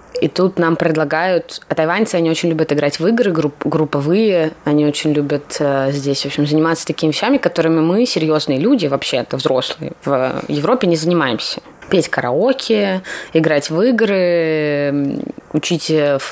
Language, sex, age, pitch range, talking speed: Russian, female, 20-39, 155-205 Hz, 145 wpm